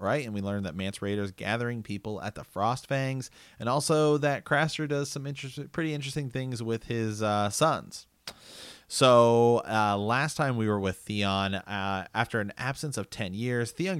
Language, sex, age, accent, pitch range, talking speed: English, male, 30-49, American, 100-130 Hz, 185 wpm